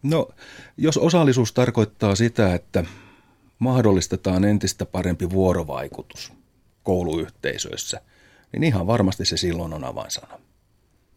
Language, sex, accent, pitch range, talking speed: Finnish, male, native, 95-115 Hz, 95 wpm